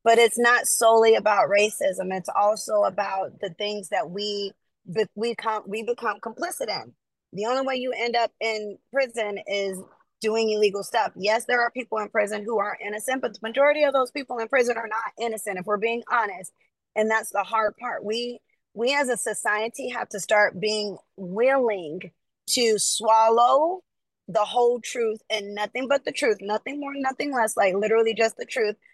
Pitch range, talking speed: 205-240 Hz, 185 wpm